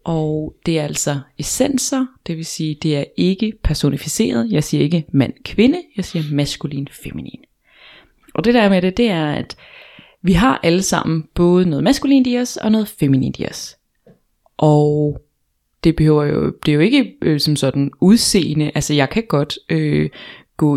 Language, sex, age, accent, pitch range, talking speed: Danish, female, 20-39, native, 145-195 Hz, 175 wpm